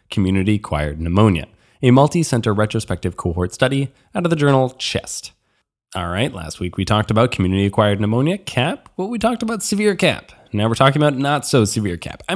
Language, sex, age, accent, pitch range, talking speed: English, male, 20-39, American, 105-160 Hz, 175 wpm